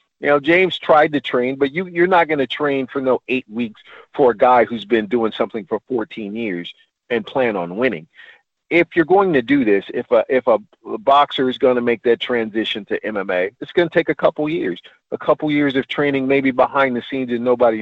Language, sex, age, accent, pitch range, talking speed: English, male, 50-69, American, 120-150 Hz, 230 wpm